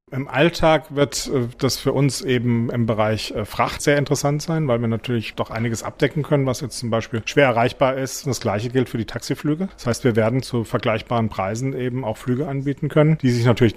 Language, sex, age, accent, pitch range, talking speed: German, male, 40-59, German, 115-140 Hz, 210 wpm